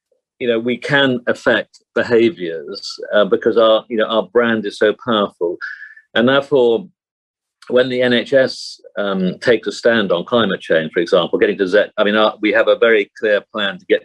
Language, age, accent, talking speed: English, 50-69, British, 190 wpm